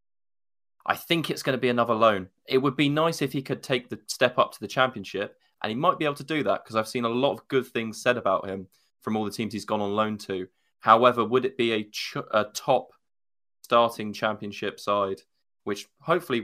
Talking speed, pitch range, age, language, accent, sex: 225 wpm, 100-115 Hz, 20-39, English, British, male